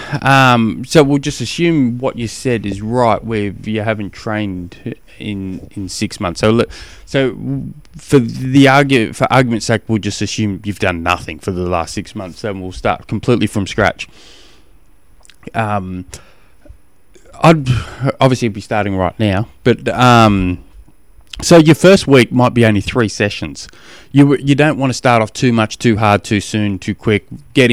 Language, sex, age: English, male, 20-39